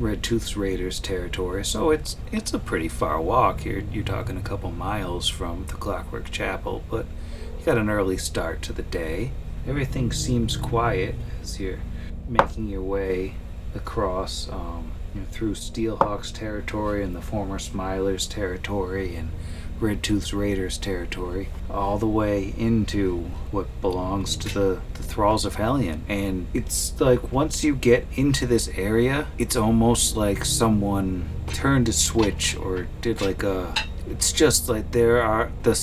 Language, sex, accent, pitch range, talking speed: English, male, American, 85-110 Hz, 155 wpm